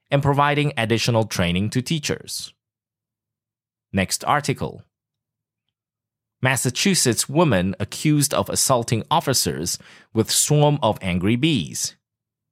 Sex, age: male, 30-49